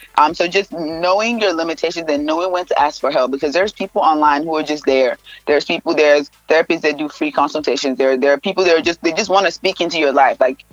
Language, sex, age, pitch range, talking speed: English, female, 20-39, 145-180 Hz, 250 wpm